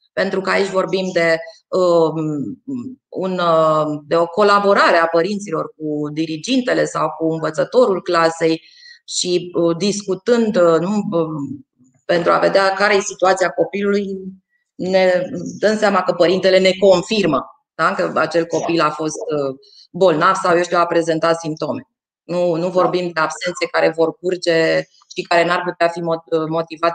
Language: Romanian